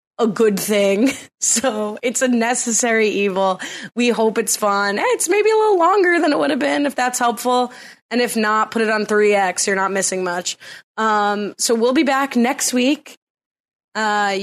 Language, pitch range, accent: English, 200-260 Hz, American